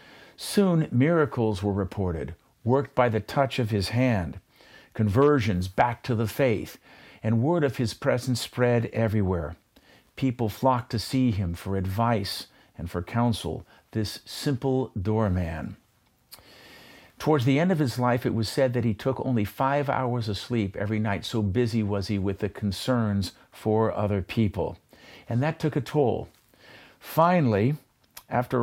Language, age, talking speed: English, 50-69, 150 wpm